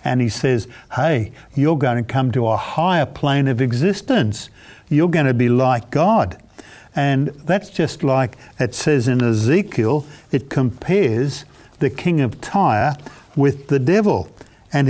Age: 60-79